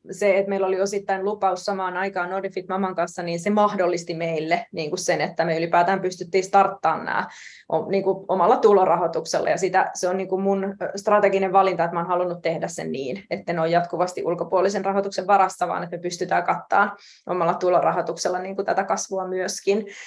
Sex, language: female, Finnish